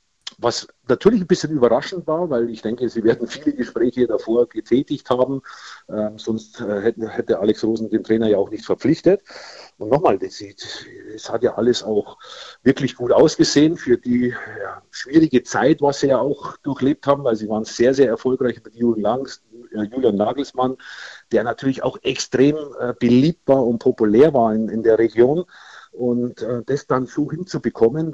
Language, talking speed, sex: German, 150 wpm, male